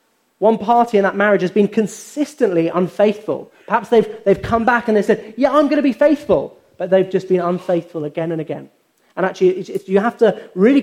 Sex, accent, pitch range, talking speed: male, British, 180-235 Hz, 205 wpm